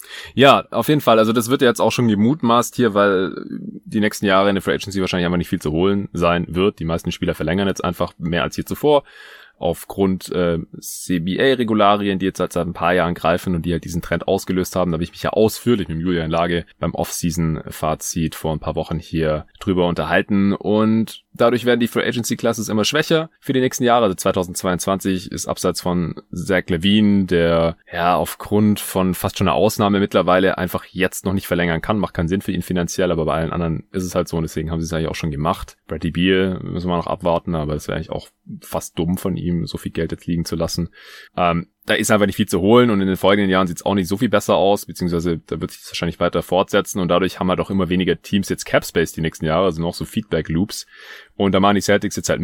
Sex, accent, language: male, German, German